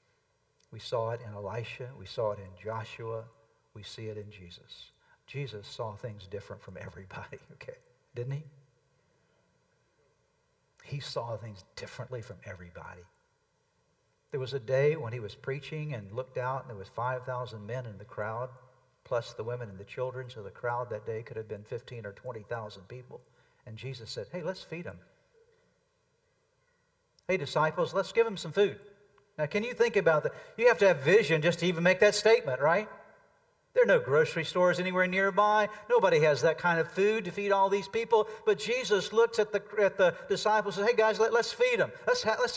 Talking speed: 190 wpm